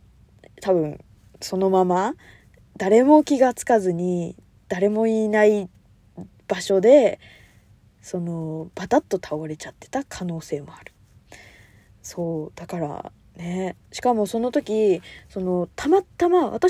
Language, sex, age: Japanese, female, 20-39